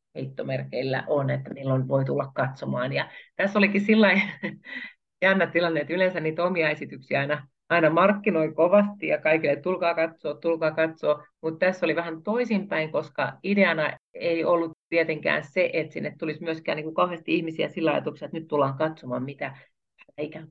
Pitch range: 145-175 Hz